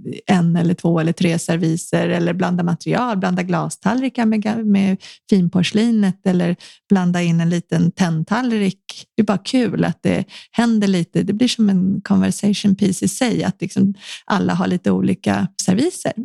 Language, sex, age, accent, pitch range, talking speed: Swedish, female, 30-49, native, 185-225 Hz, 150 wpm